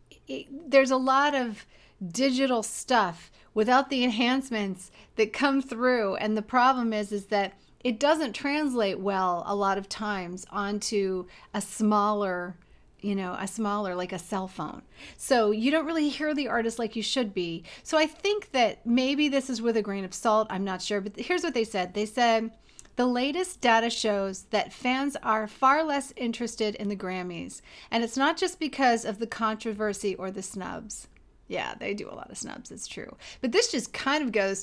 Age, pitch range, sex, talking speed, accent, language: 40-59, 200-255 Hz, female, 190 wpm, American, English